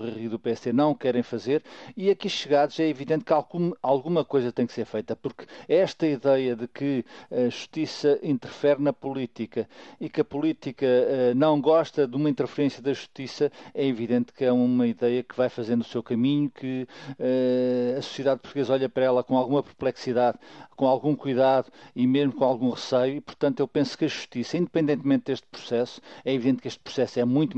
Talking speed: 190 wpm